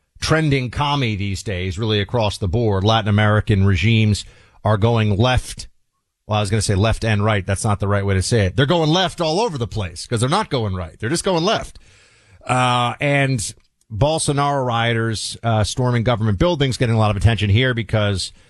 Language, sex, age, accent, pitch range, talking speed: English, male, 40-59, American, 100-125 Hz, 200 wpm